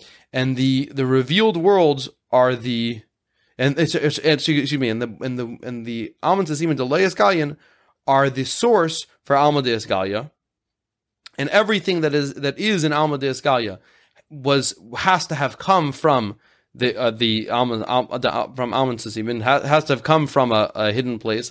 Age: 20-39